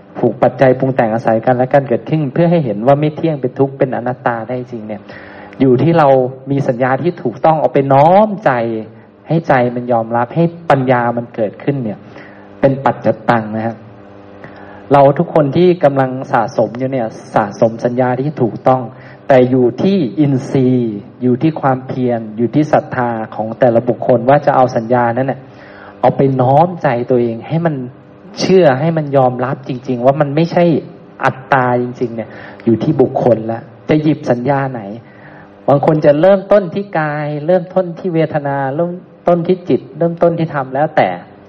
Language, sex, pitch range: Thai, male, 120-155 Hz